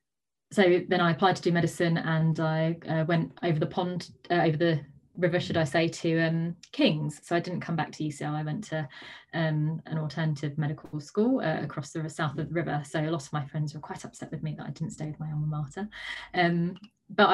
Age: 20-39